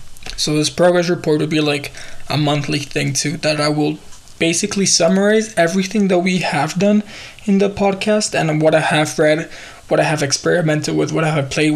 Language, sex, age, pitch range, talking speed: English, male, 20-39, 155-200 Hz, 195 wpm